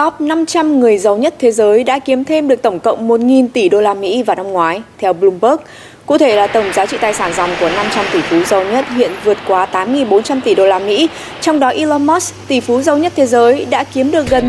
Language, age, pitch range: Vietnamese, 20-39, 200-280 Hz